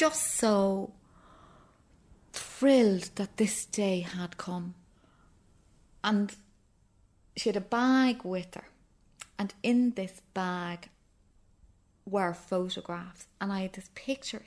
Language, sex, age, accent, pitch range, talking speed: English, female, 30-49, British, 180-225 Hz, 110 wpm